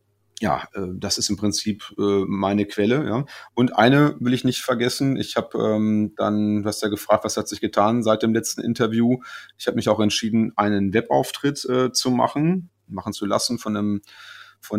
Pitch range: 100-115 Hz